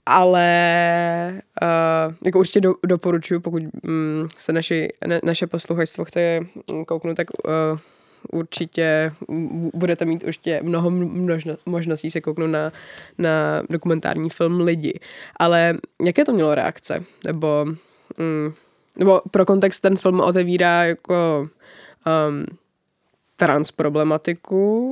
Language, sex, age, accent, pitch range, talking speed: English, female, 20-39, Czech, 160-175 Hz, 115 wpm